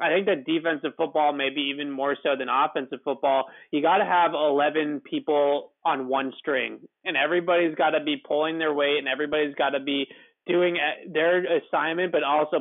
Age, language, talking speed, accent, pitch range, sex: 20-39, English, 185 wpm, American, 140-165 Hz, male